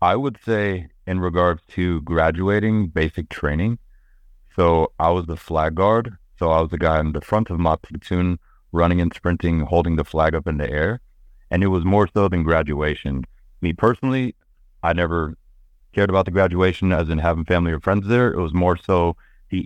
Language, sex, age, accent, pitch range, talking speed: English, male, 30-49, American, 80-95 Hz, 190 wpm